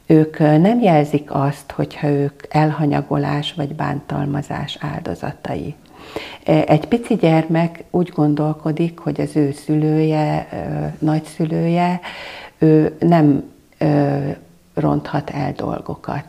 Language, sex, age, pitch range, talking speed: Hungarian, female, 50-69, 145-165 Hz, 90 wpm